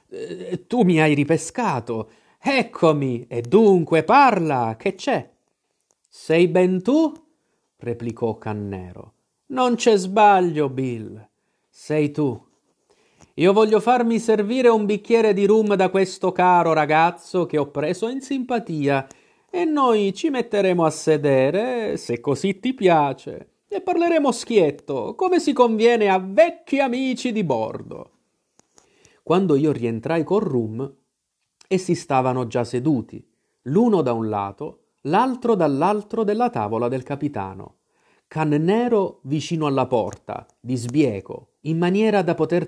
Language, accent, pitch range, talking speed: Italian, native, 130-215 Hz, 125 wpm